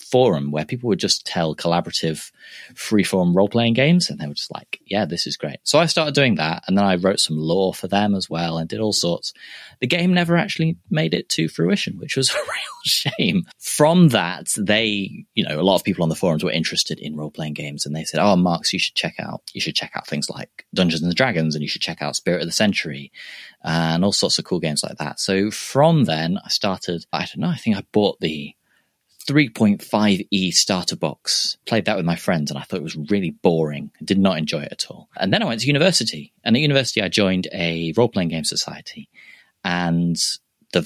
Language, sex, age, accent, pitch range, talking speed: English, male, 30-49, British, 80-115 Hz, 230 wpm